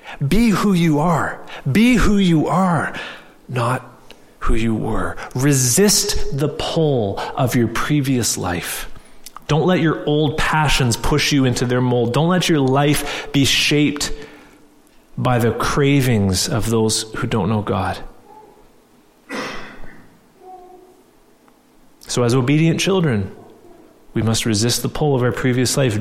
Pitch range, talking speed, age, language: 125-170 Hz, 130 wpm, 30-49, English